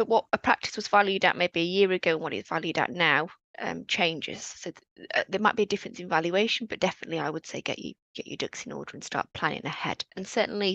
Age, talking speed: 20-39, 255 wpm